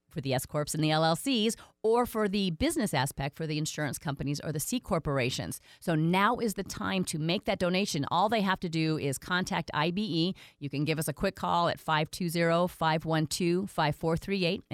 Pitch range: 155-210 Hz